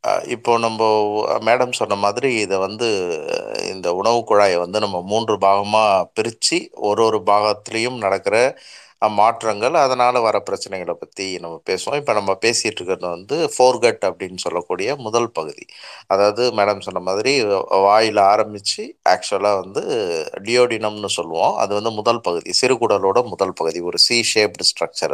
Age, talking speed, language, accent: 30-49, 135 wpm, Tamil, native